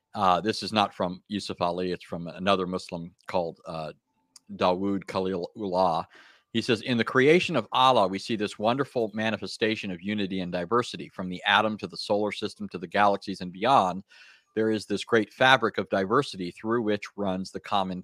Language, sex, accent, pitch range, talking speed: English, male, American, 95-115 Hz, 185 wpm